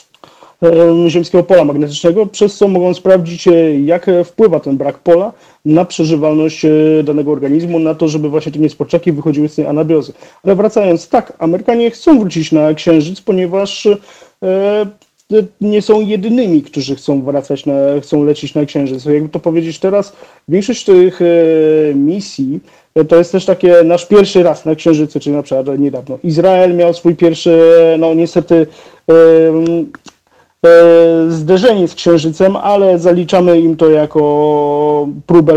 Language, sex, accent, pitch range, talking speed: Polish, male, native, 150-180 Hz, 145 wpm